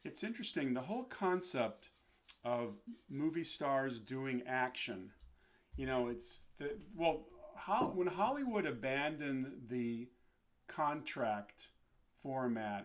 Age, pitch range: 40-59, 125-160 Hz